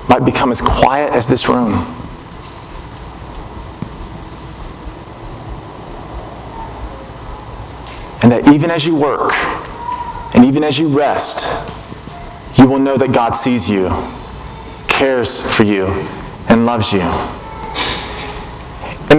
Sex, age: male, 30-49